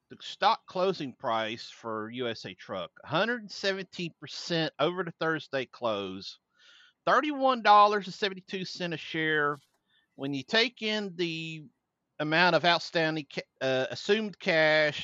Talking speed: 100 wpm